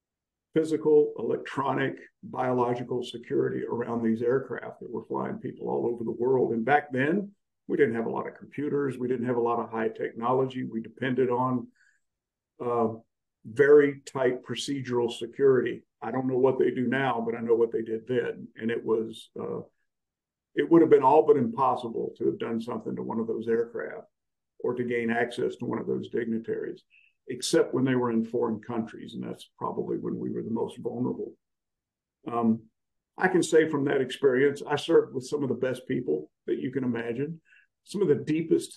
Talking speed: 190 wpm